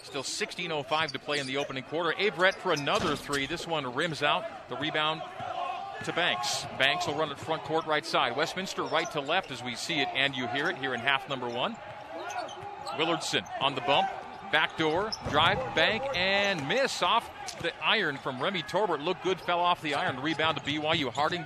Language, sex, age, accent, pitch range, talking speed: English, male, 40-59, American, 145-185 Hz, 200 wpm